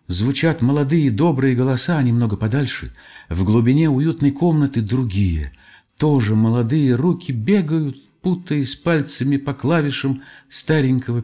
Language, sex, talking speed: Russian, male, 105 wpm